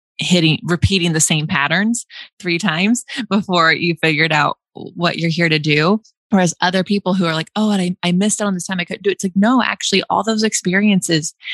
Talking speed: 220 wpm